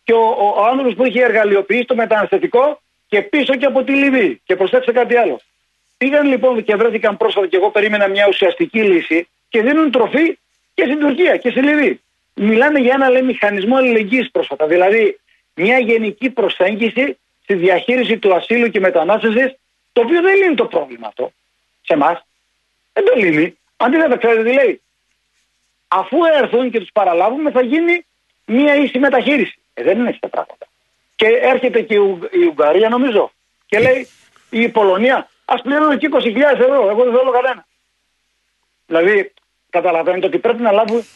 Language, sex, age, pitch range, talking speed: Greek, male, 40-59, 195-265 Hz, 160 wpm